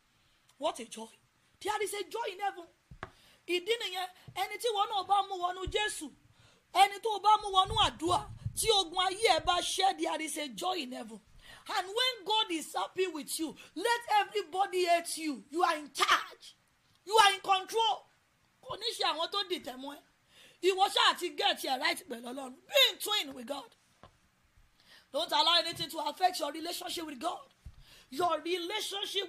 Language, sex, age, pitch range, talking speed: English, female, 30-49, 305-400 Hz, 160 wpm